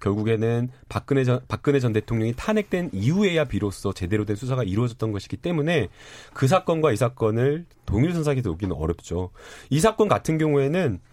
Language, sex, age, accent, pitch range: Korean, male, 30-49, native, 115-160 Hz